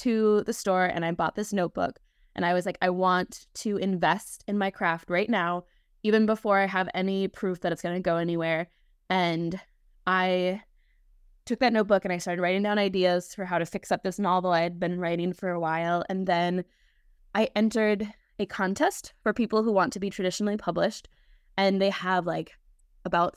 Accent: American